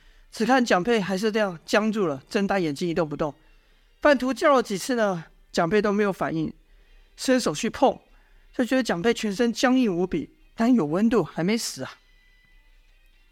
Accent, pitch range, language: native, 175-230 Hz, Chinese